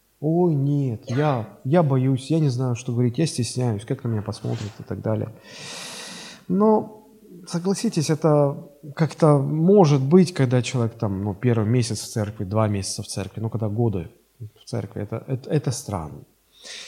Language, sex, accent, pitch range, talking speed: Russian, male, native, 120-165 Hz, 165 wpm